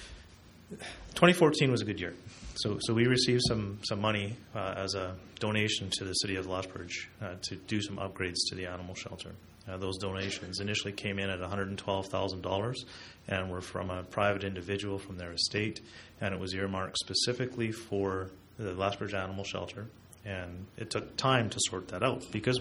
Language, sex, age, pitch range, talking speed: English, male, 30-49, 95-105 Hz, 175 wpm